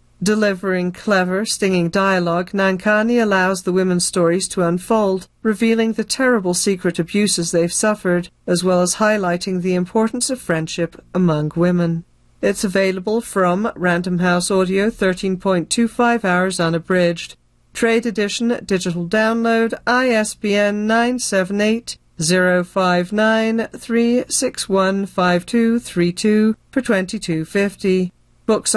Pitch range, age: 180-220 Hz, 40-59